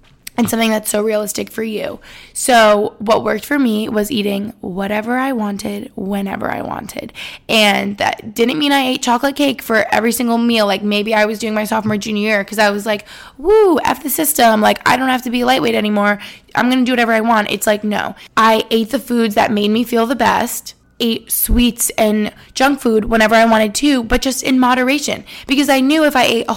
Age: 20-39